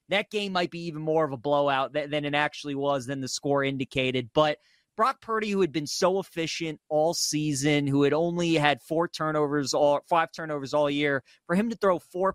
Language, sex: English, male